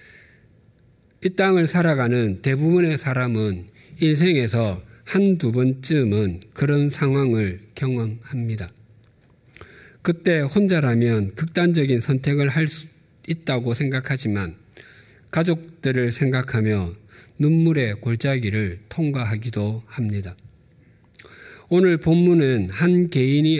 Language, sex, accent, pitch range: Korean, male, native, 115-155 Hz